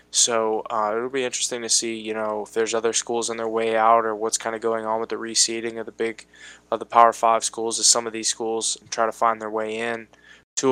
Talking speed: 260 wpm